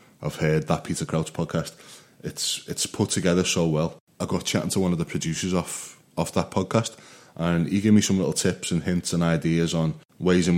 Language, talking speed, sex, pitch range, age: English, 215 wpm, male, 80-95 Hz, 20-39